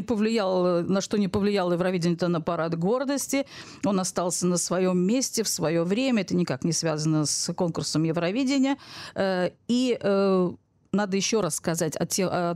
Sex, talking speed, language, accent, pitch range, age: female, 150 wpm, Russian, native, 175-215 Hz, 40-59